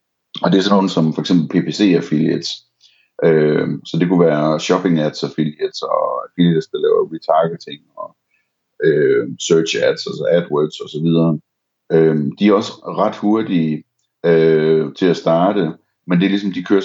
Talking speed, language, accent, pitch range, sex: 150 wpm, Danish, native, 80-95 Hz, male